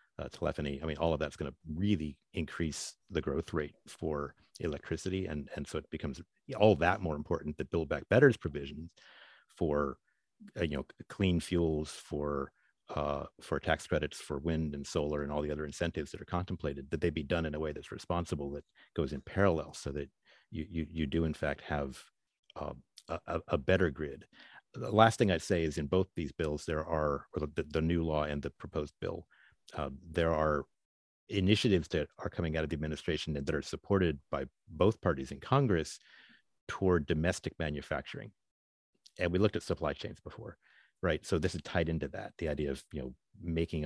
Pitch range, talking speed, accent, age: 75-90 Hz, 195 wpm, American, 50-69